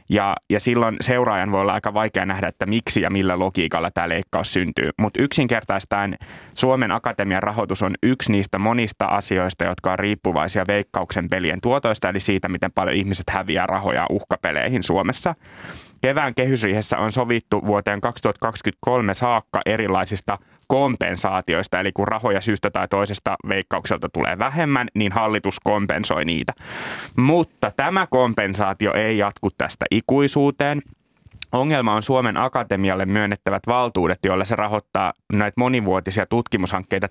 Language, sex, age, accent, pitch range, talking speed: Finnish, male, 20-39, native, 100-125 Hz, 135 wpm